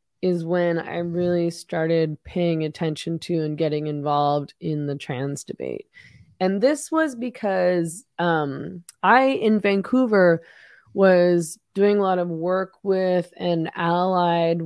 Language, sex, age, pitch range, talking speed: English, female, 20-39, 155-180 Hz, 130 wpm